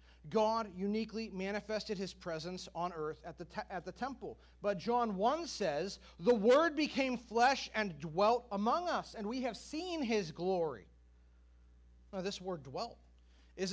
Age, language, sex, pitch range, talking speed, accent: 40-59, English, male, 160-240 Hz, 155 wpm, American